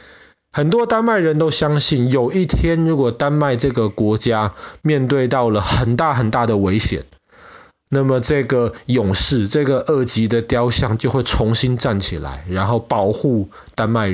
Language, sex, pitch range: Chinese, male, 105-135 Hz